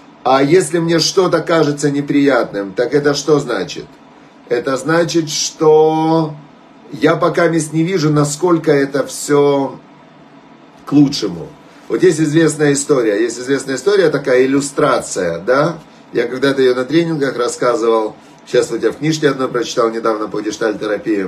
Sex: male